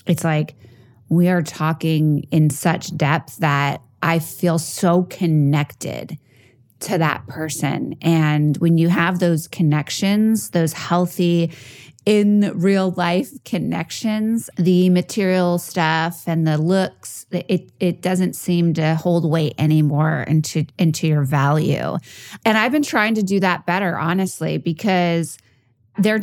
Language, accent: English, American